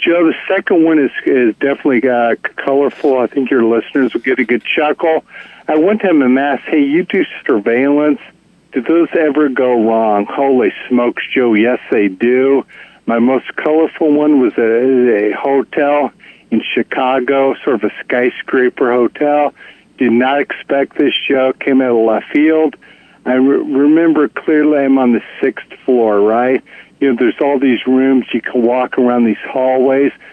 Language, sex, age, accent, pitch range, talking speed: English, male, 60-79, American, 120-150 Hz, 170 wpm